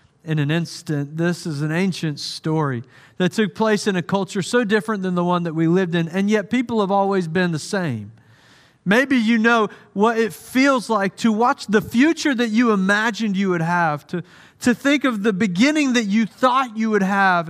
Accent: American